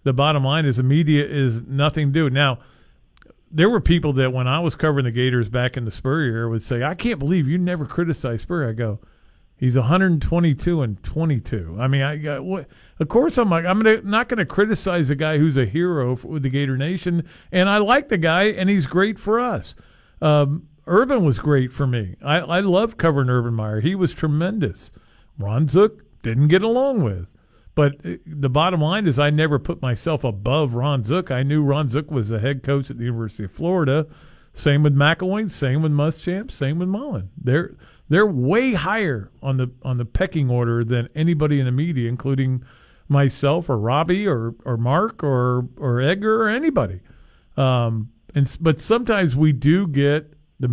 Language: English